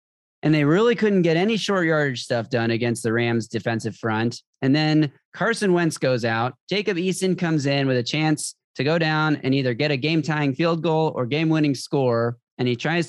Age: 30-49